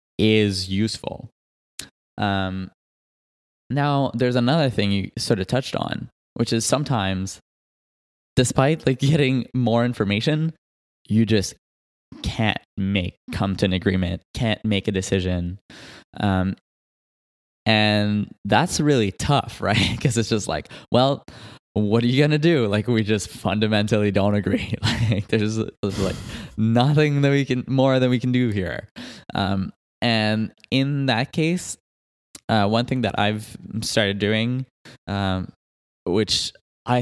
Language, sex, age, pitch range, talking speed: English, male, 20-39, 95-125 Hz, 135 wpm